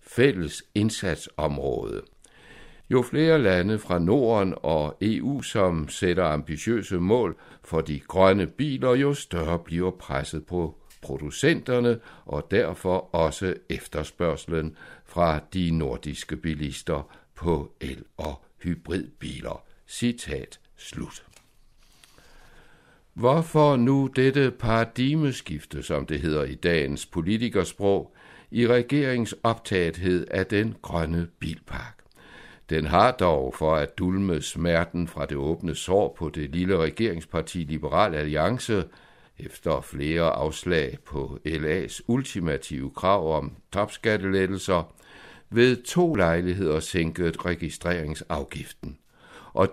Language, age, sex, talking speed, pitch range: Danish, 60-79, male, 105 wpm, 80-115 Hz